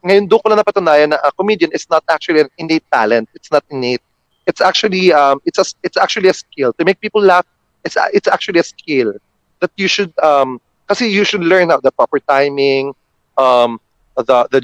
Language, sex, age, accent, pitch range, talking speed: English, male, 30-49, Filipino, 130-180 Hz, 200 wpm